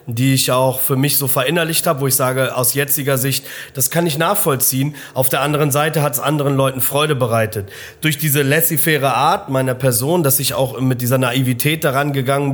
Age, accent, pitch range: 30-49, German, 130-150 Hz